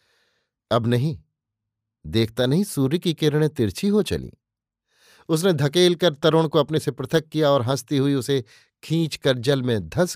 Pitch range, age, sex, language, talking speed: 120-145 Hz, 50-69, male, Hindi, 165 wpm